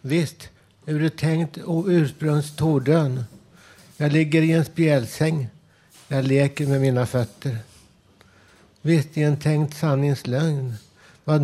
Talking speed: 115 wpm